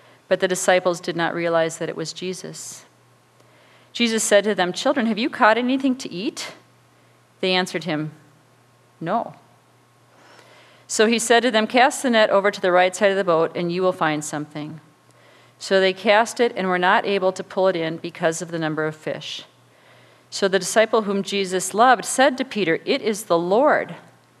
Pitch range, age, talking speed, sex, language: 160-210 Hz, 40-59, 190 wpm, female, English